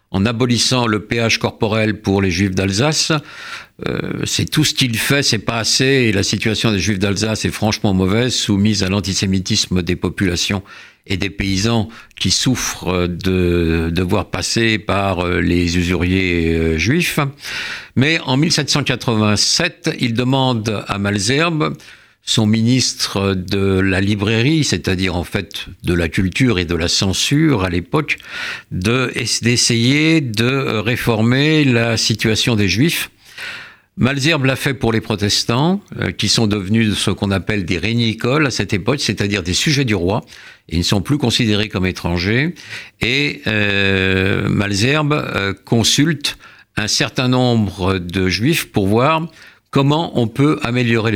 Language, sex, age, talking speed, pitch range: French, male, 60-79, 140 wpm, 95-130 Hz